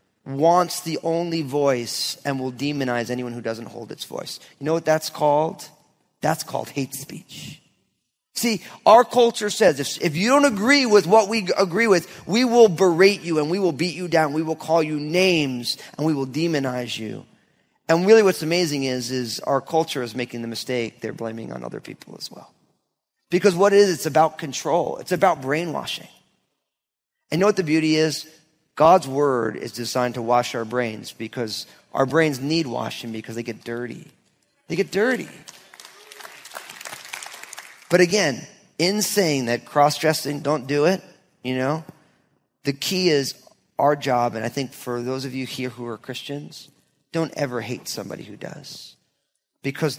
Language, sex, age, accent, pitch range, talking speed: English, male, 30-49, American, 125-170 Hz, 175 wpm